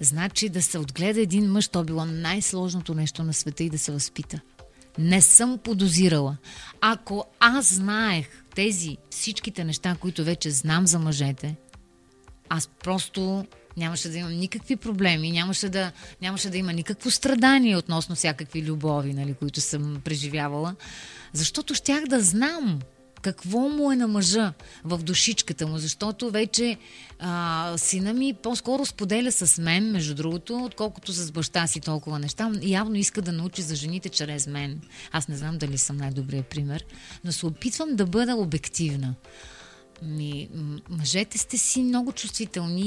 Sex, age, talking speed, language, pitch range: female, 30-49, 150 wpm, Bulgarian, 160-215 Hz